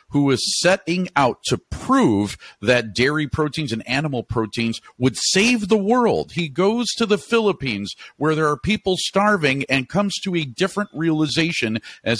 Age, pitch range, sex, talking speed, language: 50-69, 110-155 Hz, male, 160 wpm, English